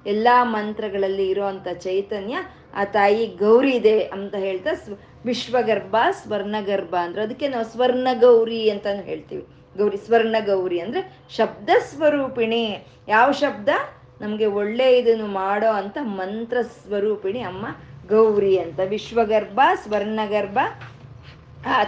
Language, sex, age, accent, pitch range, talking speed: Kannada, female, 20-39, native, 195-230 Hz, 110 wpm